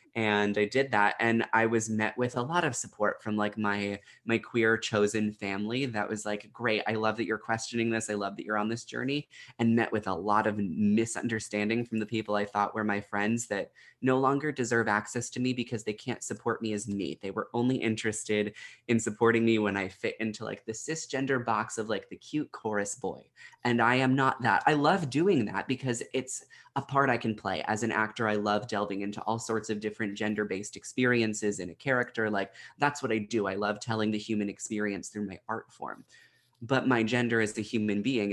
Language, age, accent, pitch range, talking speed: English, 20-39, American, 105-120 Hz, 220 wpm